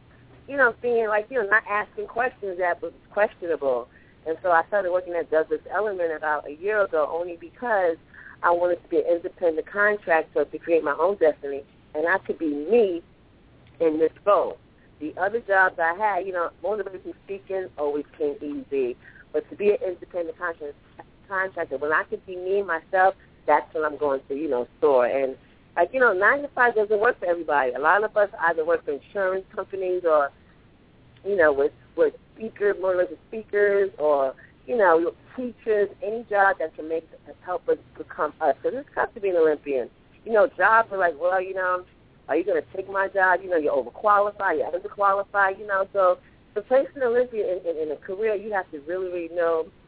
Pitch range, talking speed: 165-220 Hz, 205 wpm